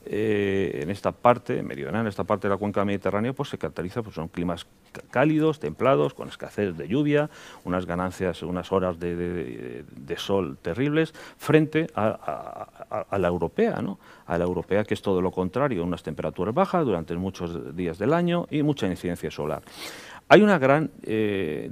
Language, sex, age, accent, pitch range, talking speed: Spanish, male, 40-59, Spanish, 90-120 Hz, 180 wpm